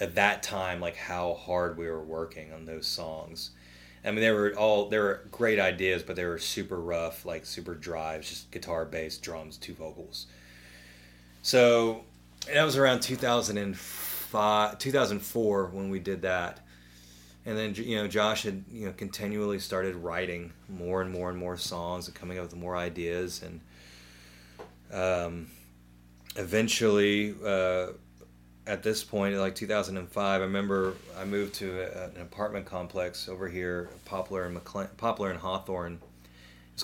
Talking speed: 155 wpm